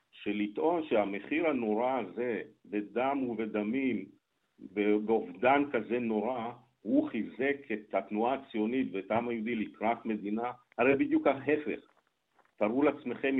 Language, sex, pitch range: Hebrew, male, 105-135 Hz